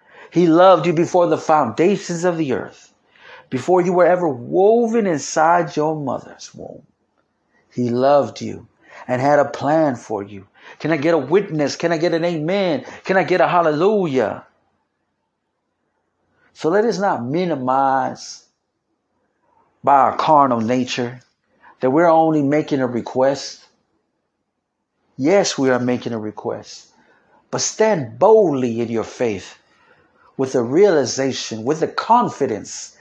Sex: male